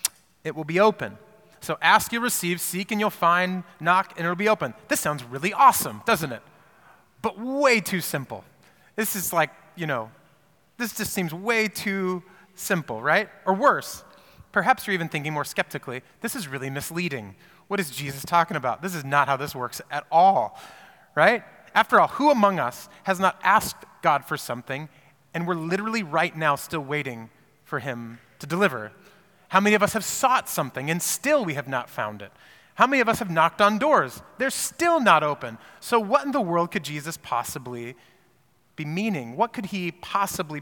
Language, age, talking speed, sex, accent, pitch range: English, 30-49, 190 wpm, male, American, 150-205 Hz